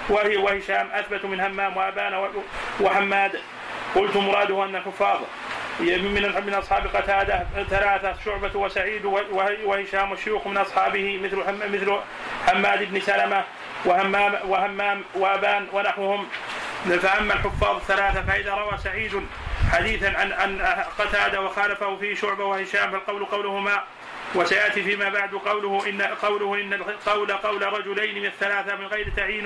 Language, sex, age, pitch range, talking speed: Arabic, male, 30-49, 195-205 Hz, 125 wpm